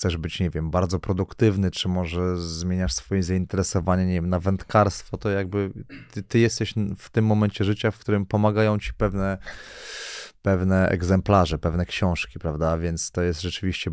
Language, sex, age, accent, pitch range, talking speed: Polish, male, 20-39, native, 90-100 Hz, 165 wpm